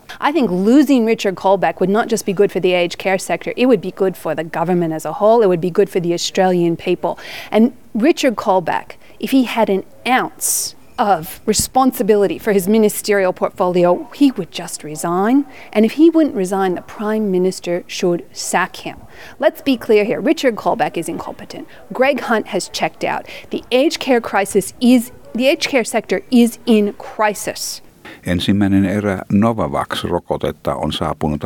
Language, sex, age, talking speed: Finnish, female, 40-59, 175 wpm